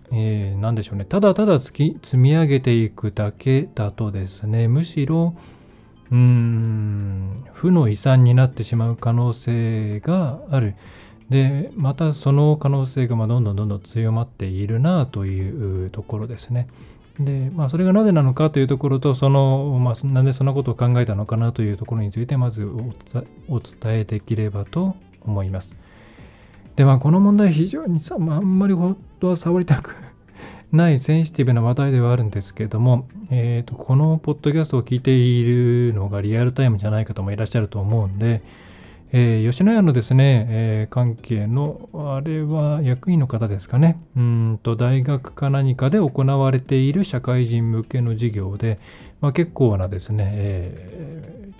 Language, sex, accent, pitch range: Japanese, male, native, 110-140 Hz